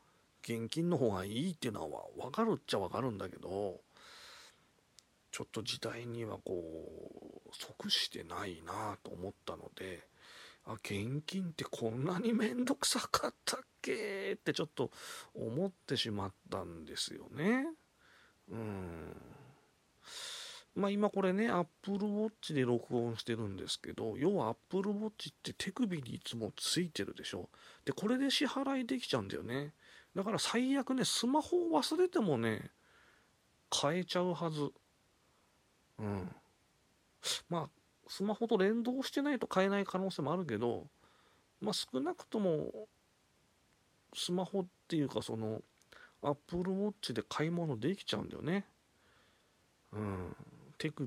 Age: 40-59